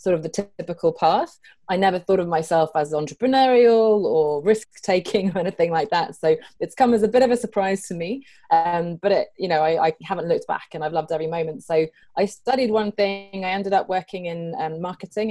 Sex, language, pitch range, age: female, English, 160-200 Hz, 20-39